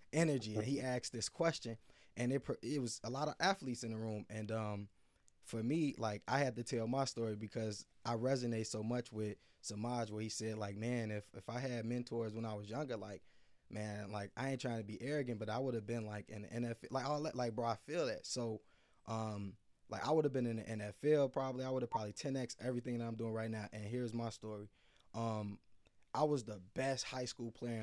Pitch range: 105-125 Hz